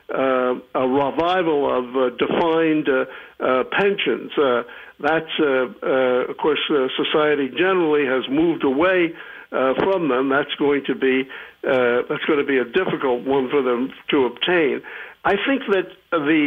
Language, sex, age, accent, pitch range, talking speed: English, male, 60-79, American, 135-180 Hz, 155 wpm